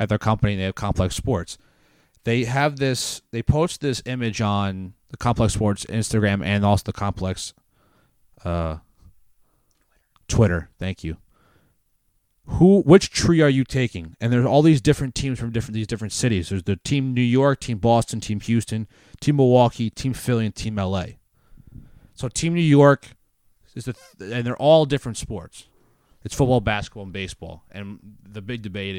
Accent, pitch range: American, 105-135 Hz